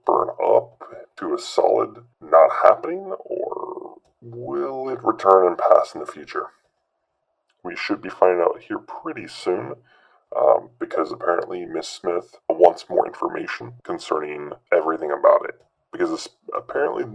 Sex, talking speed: female, 135 wpm